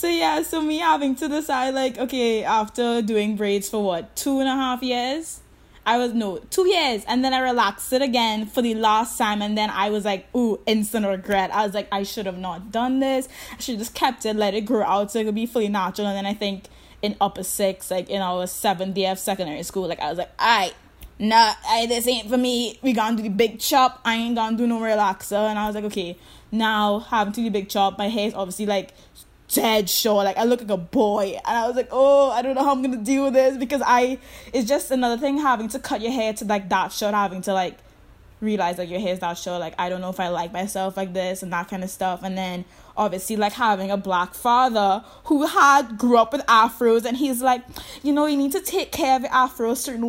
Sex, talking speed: female, 260 wpm